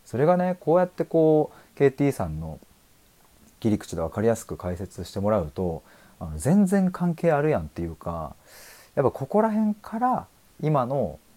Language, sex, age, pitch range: Japanese, male, 30-49, 90-120 Hz